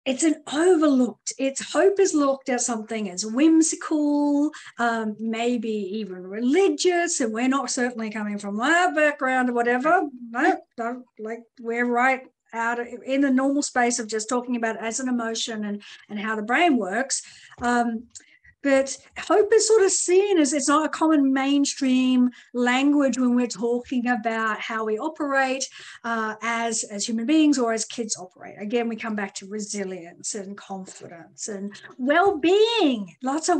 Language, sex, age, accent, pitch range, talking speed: English, female, 50-69, Australian, 230-315 Hz, 165 wpm